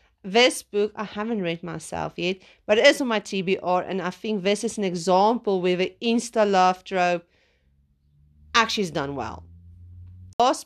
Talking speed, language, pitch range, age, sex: 170 wpm, English, 165-215 Hz, 40-59, female